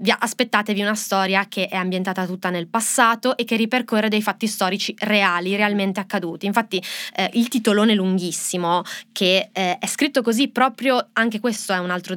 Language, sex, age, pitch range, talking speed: Italian, female, 20-39, 185-220 Hz, 175 wpm